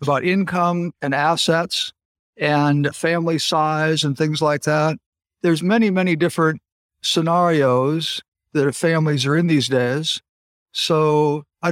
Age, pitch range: 50-69, 140-170 Hz